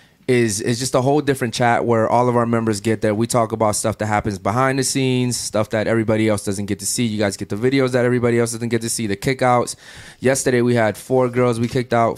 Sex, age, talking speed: male, 20-39, 260 wpm